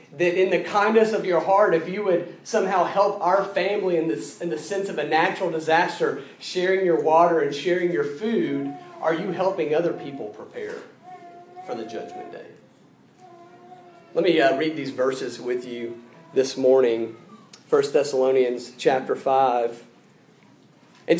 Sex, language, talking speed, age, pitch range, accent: male, English, 155 wpm, 40-59, 155-190 Hz, American